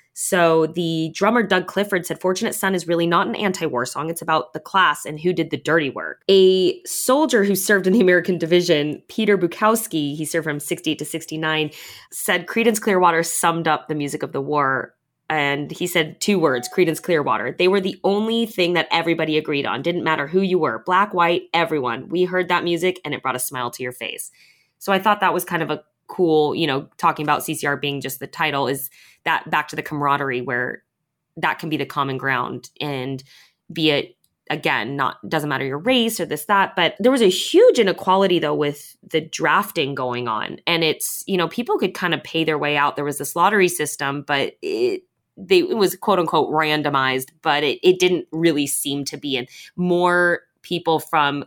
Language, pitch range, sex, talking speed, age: English, 145-195 Hz, female, 210 wpm, 20-39